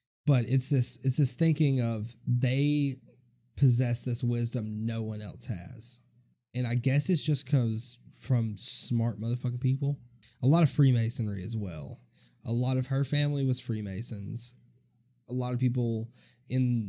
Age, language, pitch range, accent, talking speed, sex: 20-39, English, 115-130 Hz, American, 150 wpm, male